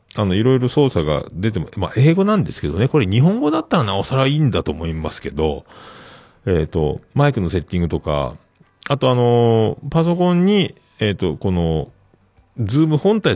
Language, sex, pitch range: Japanese, male, 90-145 Hz